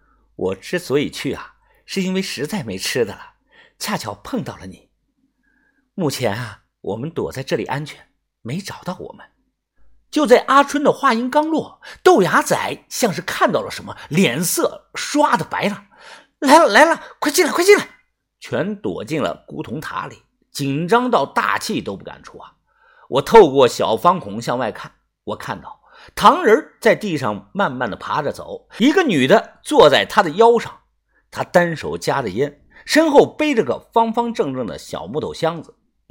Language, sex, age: Chinese, male, 50-69